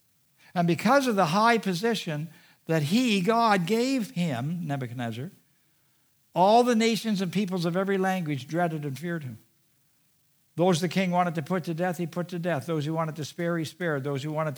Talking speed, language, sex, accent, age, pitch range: 190 wpm, English, male, American, 60-79, 135-175 Hz